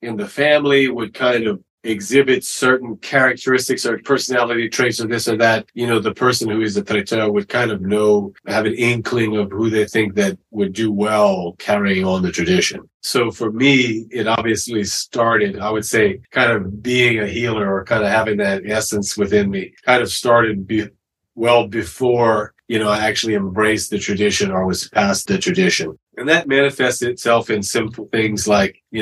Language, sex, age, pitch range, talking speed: English, male, 30-49, 105-125 Hz, 190 wpm